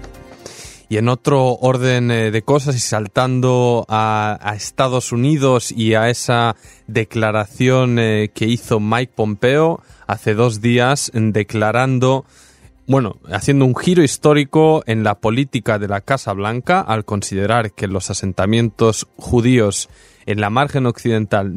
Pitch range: 110-140 Hz